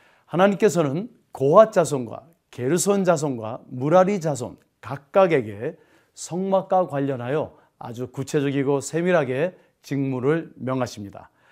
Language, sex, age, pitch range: Korean, male, 40-59, 125-170 Hz